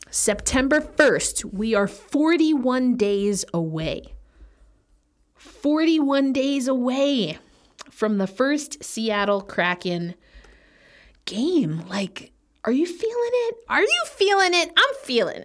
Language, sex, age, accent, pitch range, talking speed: English, female, 30-49, American, 190-260 Hz, 105 wpm